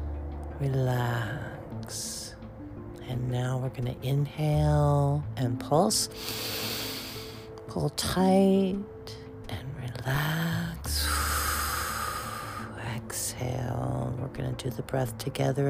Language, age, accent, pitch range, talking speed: English, 50-69, American, 110-145 Hz, 80 wpm